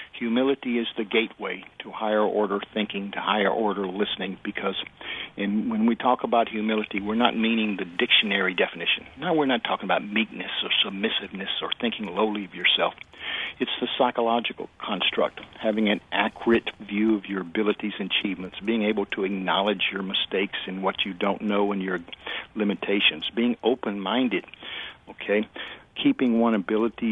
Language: English